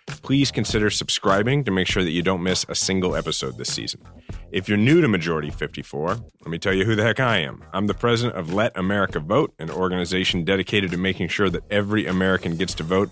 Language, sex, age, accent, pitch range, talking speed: English, male, 30-49, American, 85-110 Hz, 225 wpm